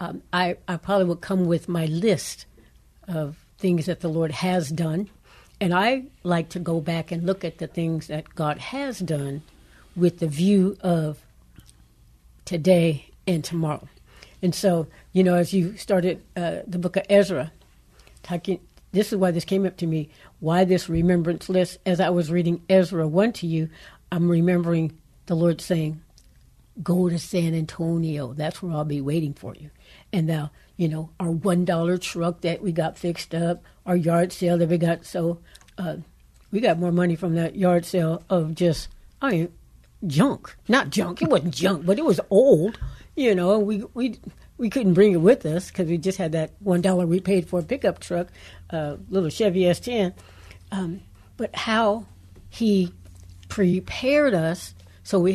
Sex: female